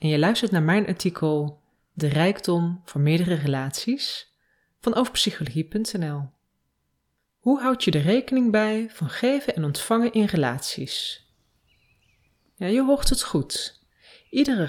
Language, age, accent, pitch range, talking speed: Dutch, 30-49, Dutch, 150-220 Hz, 125 wpm